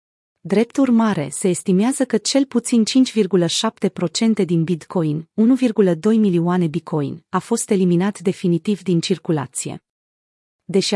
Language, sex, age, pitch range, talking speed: Romanian, female, 30-49, 175-220 Hz, 110 wpm